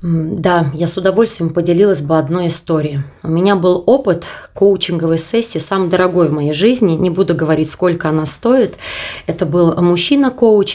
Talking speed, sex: 160 wpm, female